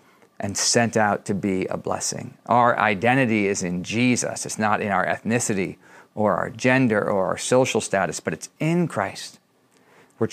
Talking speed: 170 wpm